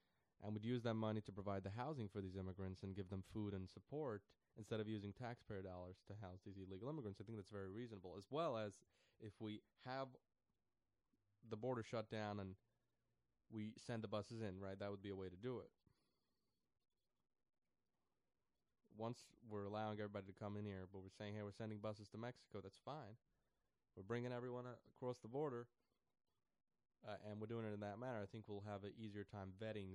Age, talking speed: 20-39, 195 wpm